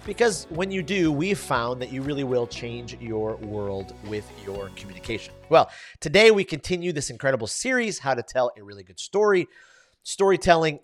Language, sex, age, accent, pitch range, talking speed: English, male, 30-49, American, 115-170 Hz, 170 wpm